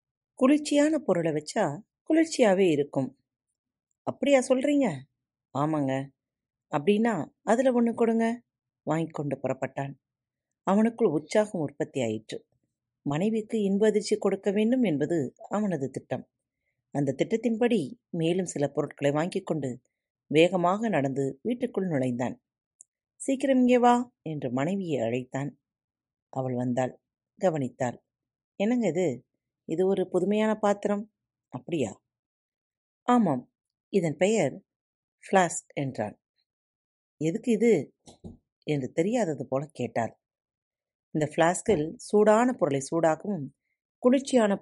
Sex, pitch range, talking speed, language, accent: female, 135-215 Hz, 90 wpm, Tamil, native